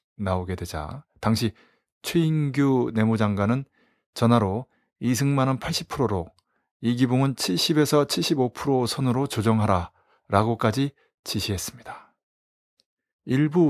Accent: native